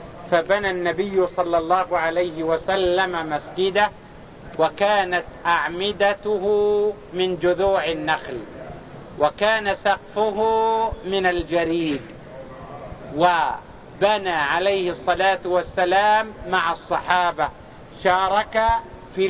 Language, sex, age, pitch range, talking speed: English, male, 50-69, 165-195 Hz, 75 wpm